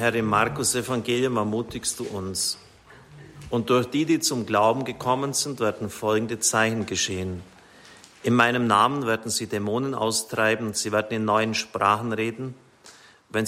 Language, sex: German, male